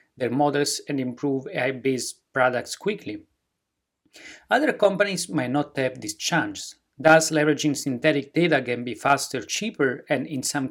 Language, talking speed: English, 140 wpm